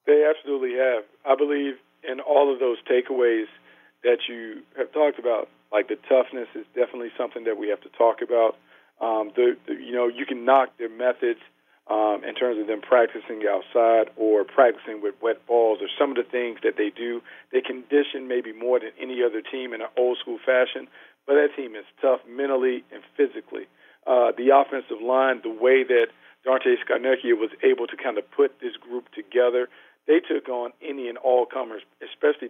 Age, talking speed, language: 40-59, 185 wpm, English